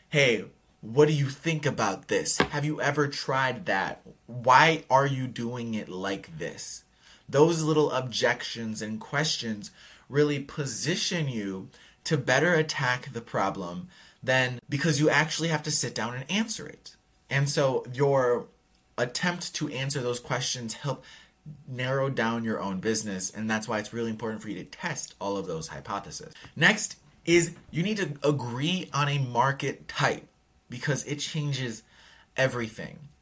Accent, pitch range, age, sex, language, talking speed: American, 120-150 Hz, 20-39, male, English, 155 wpm